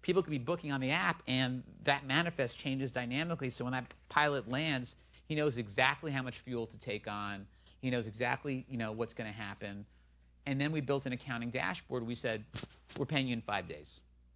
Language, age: English, 40-59